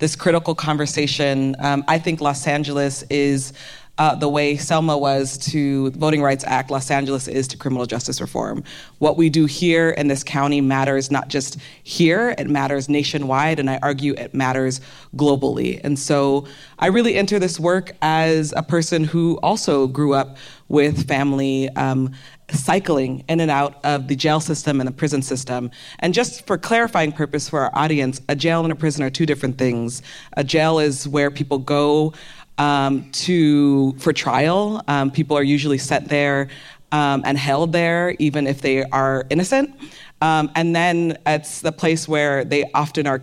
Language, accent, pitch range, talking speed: English, American, 140-160 Hz, 175 wpm